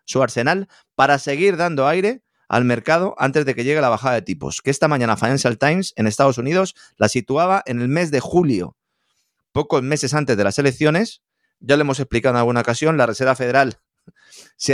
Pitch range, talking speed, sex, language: 115-155 Hz, 195 wpm, male, Spanish